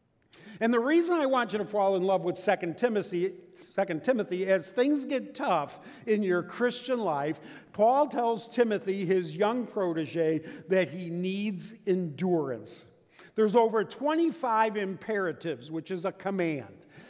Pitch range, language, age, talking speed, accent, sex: 170-230 Hz, English, 50-69, 140 wpm, American, male